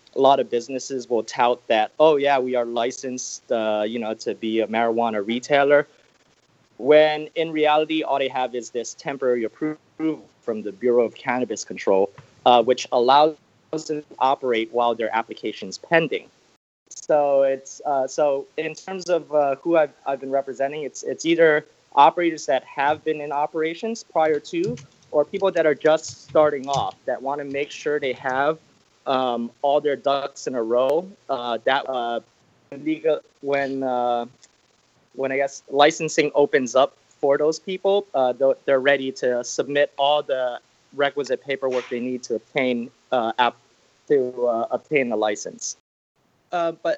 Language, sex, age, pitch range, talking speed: English, male, 20-39, 125-155 Hz, 160 wpm